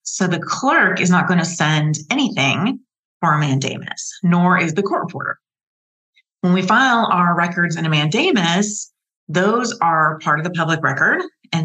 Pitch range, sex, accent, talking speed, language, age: 155-185 Hz, female, American, 170 wpm, English, 30-49